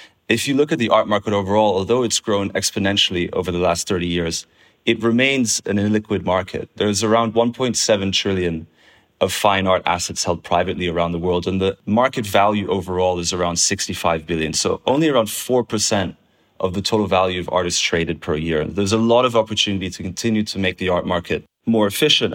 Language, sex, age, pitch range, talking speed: English, male, 30-49, 90-110 Hz, 195 wpm